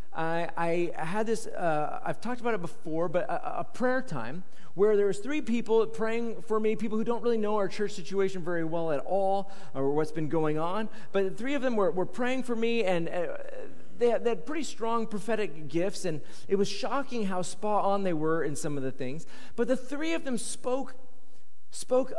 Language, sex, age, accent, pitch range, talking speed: English, male, 40-59, American, 165-225 Hz, 215 wpm